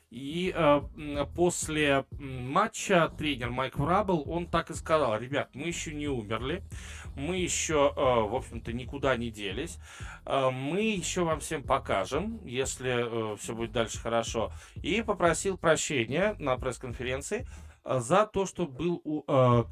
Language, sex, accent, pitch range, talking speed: Russian, male, native, 115-155 Hz, 145 wpm